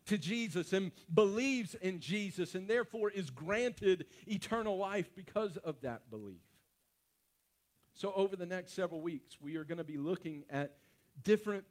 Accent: American